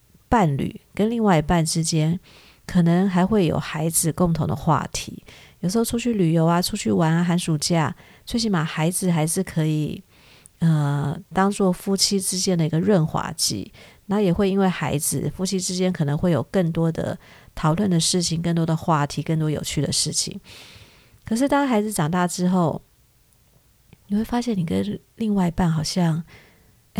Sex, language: female, Chinese